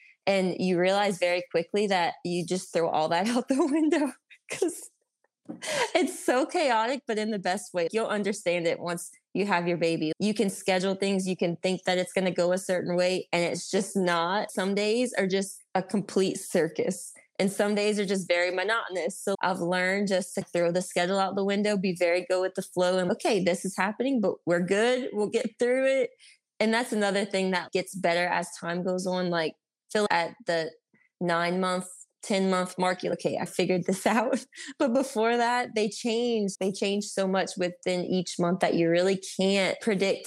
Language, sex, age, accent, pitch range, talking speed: English, female, 20-39, American, 180-210 Hz, 200 wpm